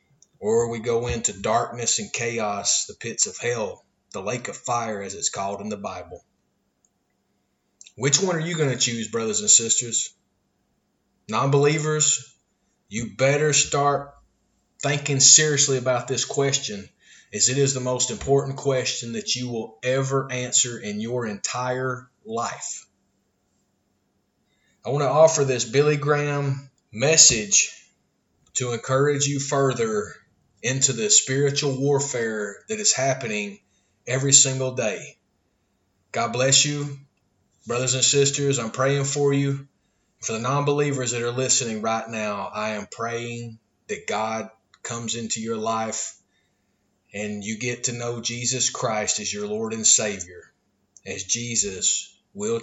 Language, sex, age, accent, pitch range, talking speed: English, male, 30-49, American, 115-140 Hz, 140 wpm